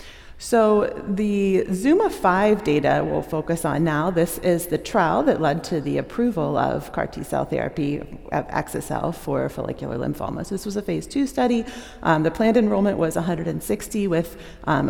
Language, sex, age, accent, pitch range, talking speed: English, female, 40-59, American, 150-205 Hz, 160 wpm